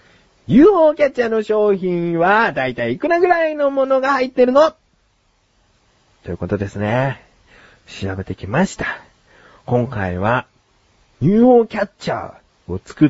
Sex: male